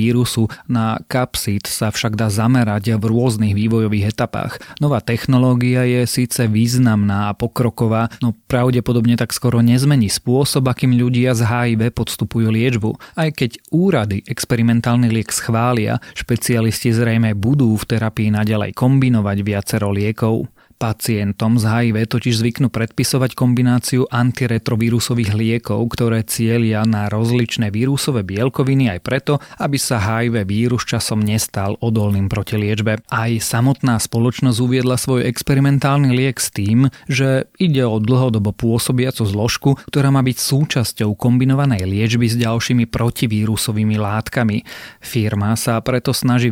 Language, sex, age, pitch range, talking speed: Slovak, male, 30-49, 110-125 Hz, 125 wpm